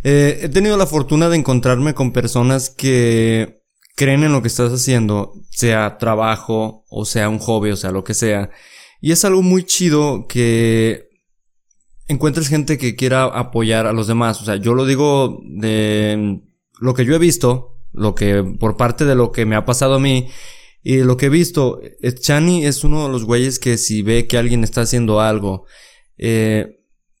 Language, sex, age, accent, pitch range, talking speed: Spanish, male, 20-39, Mexican, 115-145 Hz, 185 wpm